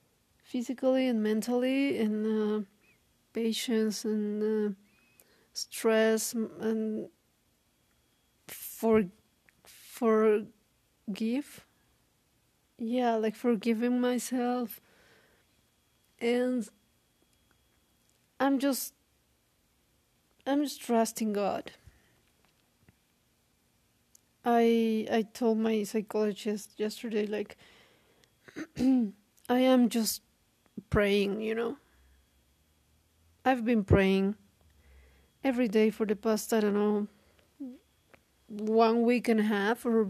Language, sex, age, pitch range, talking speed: English, female, 40-59, 210-245 Hz, 80 wpm